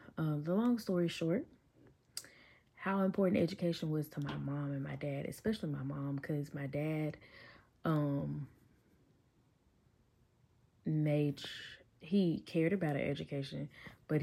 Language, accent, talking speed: English, American, 125 wpm